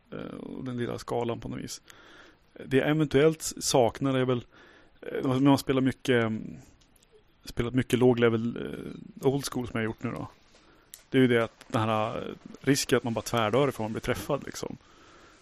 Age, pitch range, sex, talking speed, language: 30-49, 115-135 Hz, male, 185 wpm, Swedish